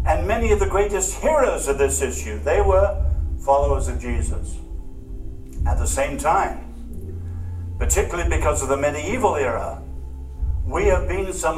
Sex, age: male, 60-79